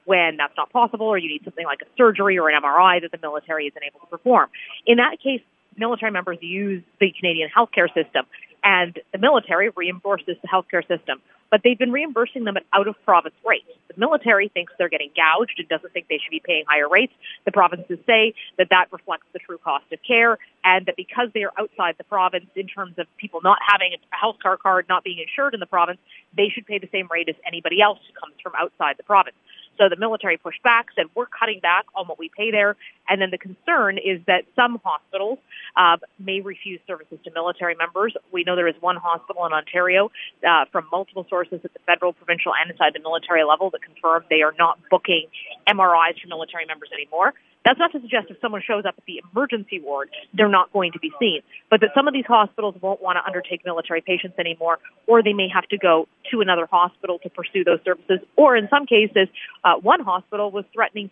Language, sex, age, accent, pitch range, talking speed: English, female, 40-59, American, 175-215 Hz, 220 wpm